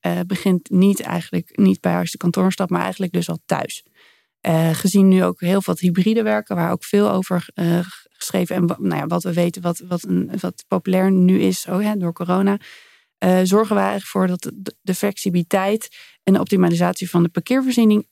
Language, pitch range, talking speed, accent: Dutch, 175-200 Hz, 200 wpm, Dutch